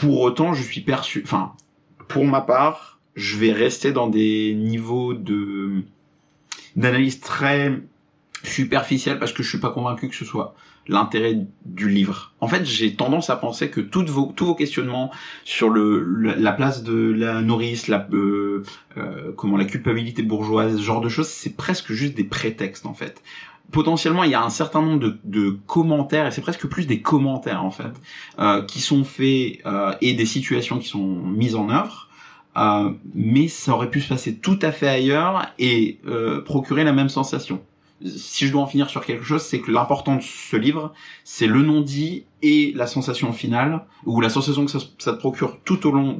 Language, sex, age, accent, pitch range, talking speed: French, male, 30-49, French, 110-150 Hz, 180 wpm